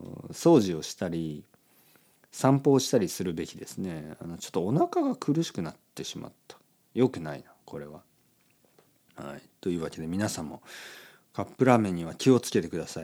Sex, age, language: male, 40-59, Japanese